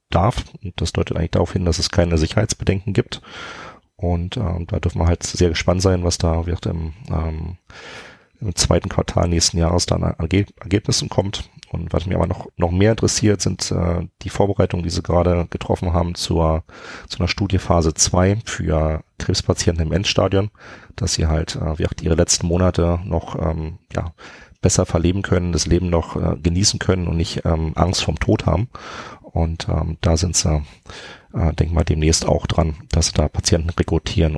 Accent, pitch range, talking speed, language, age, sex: German, 80-95 Hz, 180 wpm, German, 30-49, male